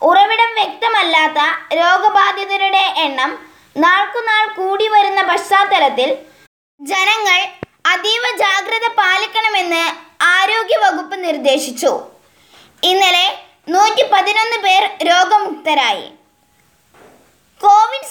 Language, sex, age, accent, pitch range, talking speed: Malayalam, female, 20-39, native, 350-425 Hz, 65 wpm